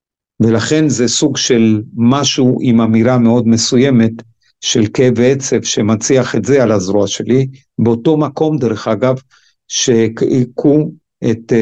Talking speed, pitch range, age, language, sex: 125 wpm, 115-130 Hz, 50-69, Hebrew, male